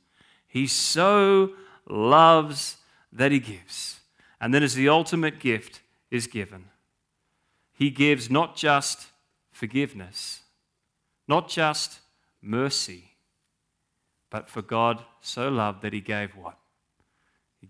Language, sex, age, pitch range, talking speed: English, male, 30-49, 110-170 Hz, 110 wpm